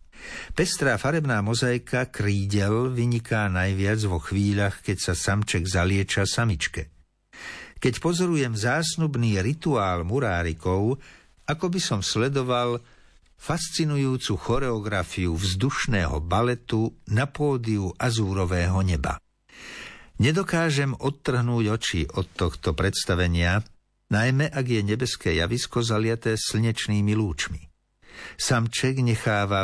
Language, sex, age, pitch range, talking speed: Slovak, male, 60-79, 95-130 Hz, 95 wpm